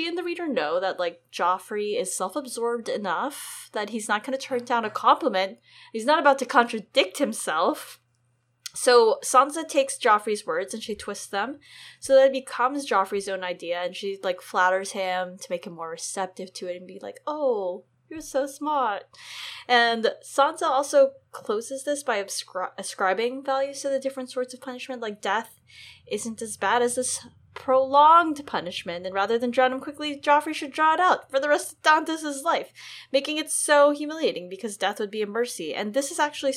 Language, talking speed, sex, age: English, 185 wpm, female, 10-29